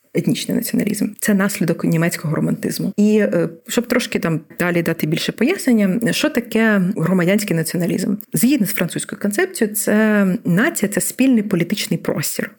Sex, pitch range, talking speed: female, 180-230 Hz, 135 wpm